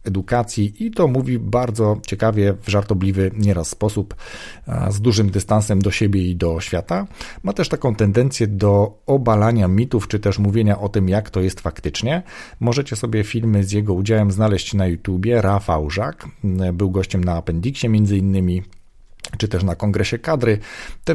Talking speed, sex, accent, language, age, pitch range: 160 wpm, male, native, Polish, 40-59, 95-115 Hz